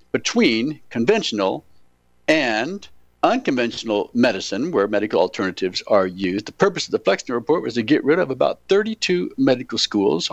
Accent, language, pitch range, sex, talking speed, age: American, English, 95-140 Hz, male, 145 wpm, 60-79